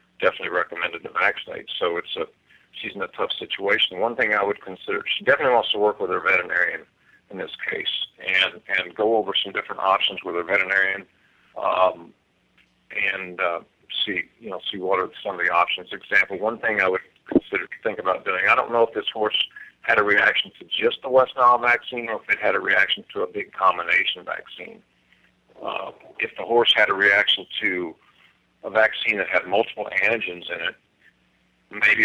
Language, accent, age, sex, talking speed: English, American, 50-69, male, 195 wpm